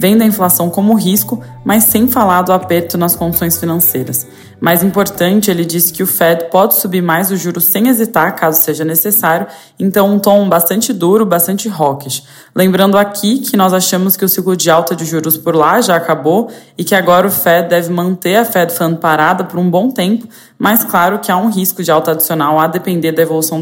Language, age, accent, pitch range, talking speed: Portuguese, 20-39, Brazilian, 165-195 Hz, 205 wpm